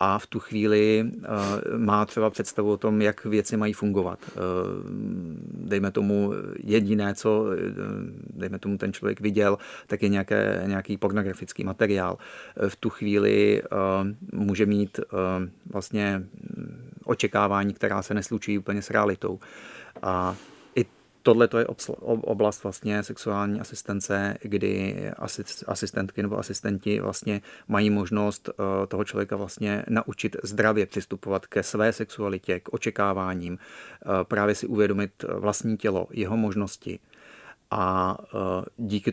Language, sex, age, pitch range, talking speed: Czech, male, 30-49, 100-105 Hz, 110 wpm